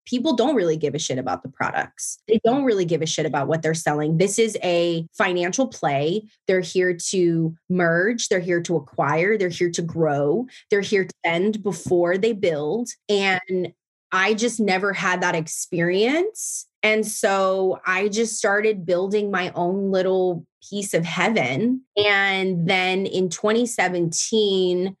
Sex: female